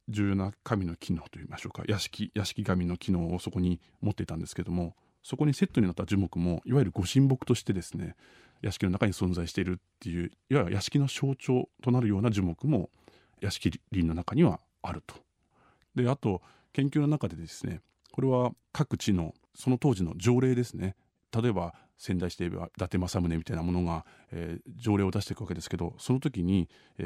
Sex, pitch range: male, 90-125 Hz